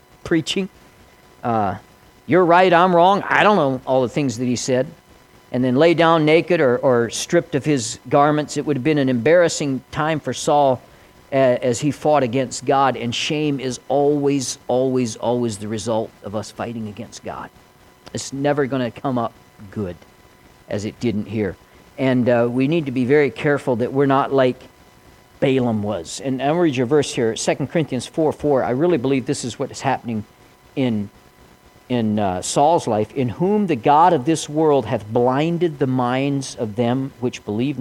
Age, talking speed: 50-69, 185 wpm